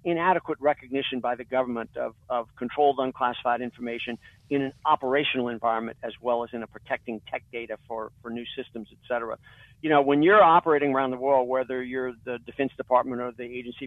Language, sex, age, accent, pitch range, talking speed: English, male, 50-69, American, 120-145 Hz, 190 wpm